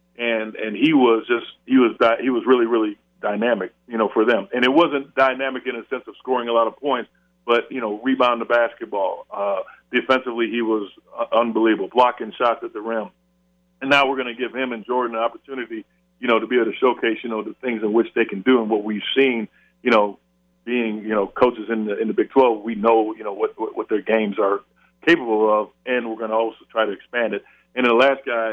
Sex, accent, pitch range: male, American, 105-125 Hz